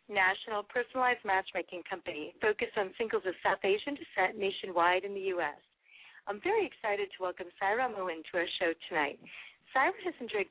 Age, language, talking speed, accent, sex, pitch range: 30-49, English, 165 wpm, American, female, 190-255 Hz